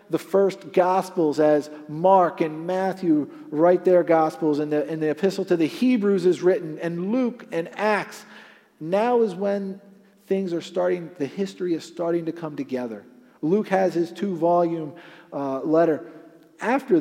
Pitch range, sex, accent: 155-200 Hz, male, American